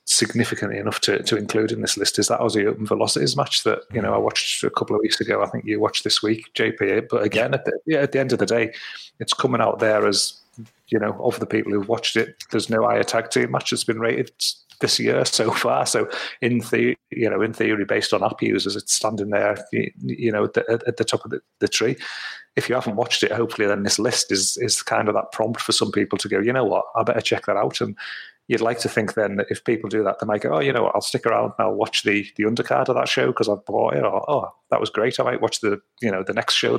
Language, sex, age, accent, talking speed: English, male, 30-49, British, 270 wpm